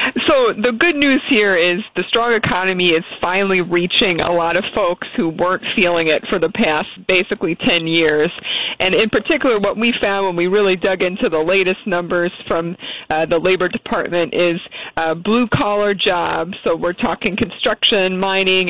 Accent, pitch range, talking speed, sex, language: American, 170-210 Hz, 175 wpm, female, English